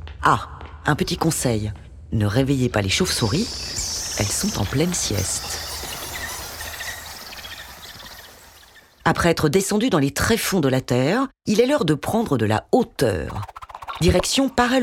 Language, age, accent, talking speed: French, 40-59, French, 135 wpm